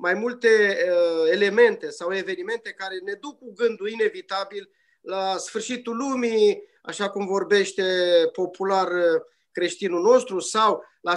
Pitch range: 190-255 Hz